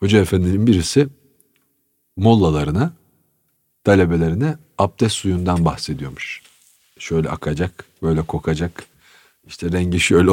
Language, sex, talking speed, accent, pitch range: Turkish, male, 85 wpm, native, 85-125 Hz